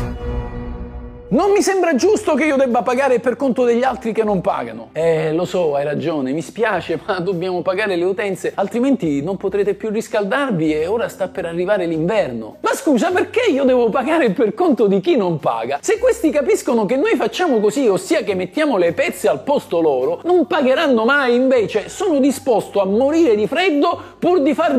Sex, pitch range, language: male, 205-315 Hz, Italian